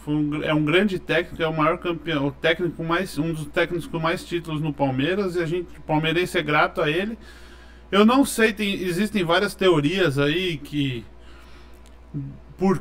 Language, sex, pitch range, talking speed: Portuguese, male, 130-190 Hz, 180 wpm